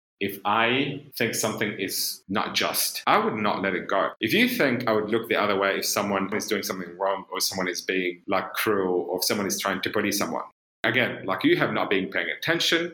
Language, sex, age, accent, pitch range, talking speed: English, male, 30-49, British, 100-115 Hz, 230 wpm